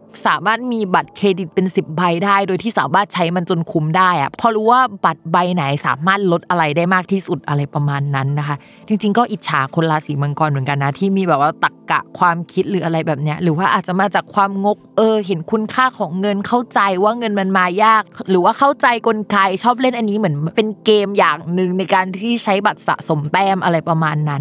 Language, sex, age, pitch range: Thai, female, 20-39, 165-220 Hz